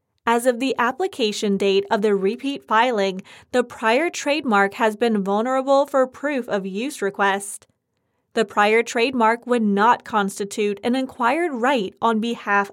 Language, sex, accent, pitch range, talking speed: English, female, American, 210-265 Hz, 145 wpm